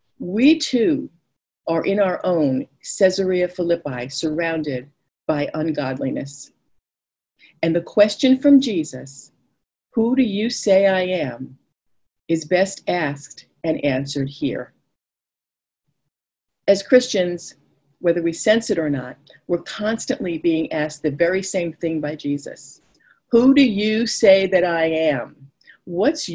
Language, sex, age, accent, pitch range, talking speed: English, female, 50-69, American, 150-215 Hz, 125 wpm